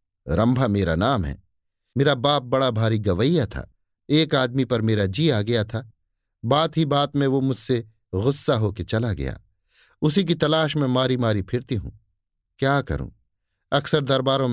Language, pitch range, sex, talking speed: Hindi, 100-140 Hz, male, 165 wpm